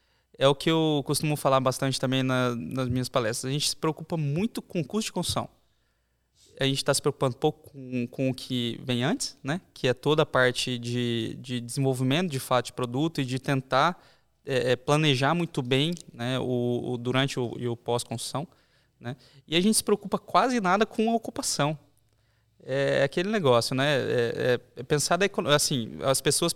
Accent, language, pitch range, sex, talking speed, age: Brazilian, Portuguese, 125-170 Hz, male, 190 wpm, 20-39